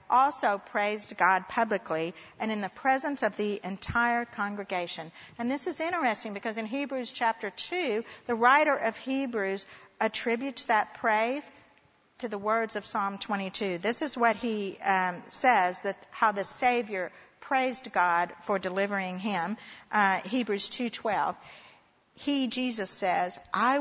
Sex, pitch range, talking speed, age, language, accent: female, 195-240 Hz, 145 wpm, 50-69, English, American